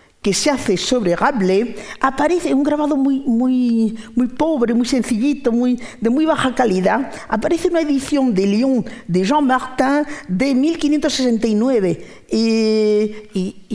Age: 50-69